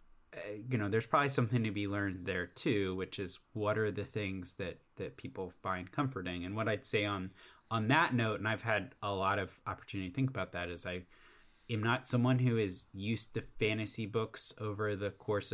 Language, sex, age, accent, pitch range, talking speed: English, male, 20-39, American, 95-115 Hz, 210 wpm